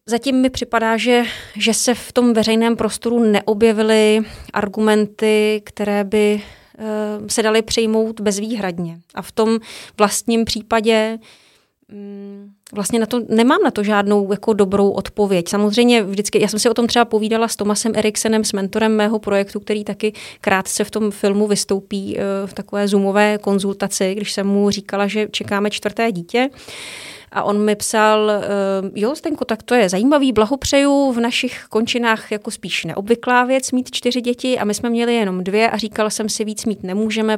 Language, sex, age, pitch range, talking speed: Czech, female, 30-49, 200-225 Hz, 160 wpm